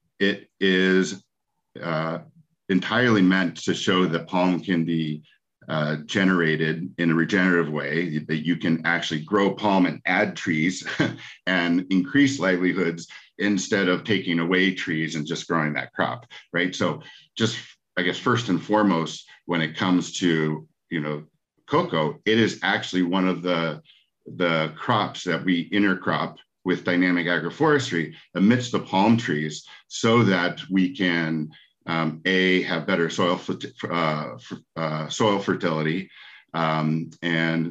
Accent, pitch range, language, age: American, 80-95 Hz, English, 50-69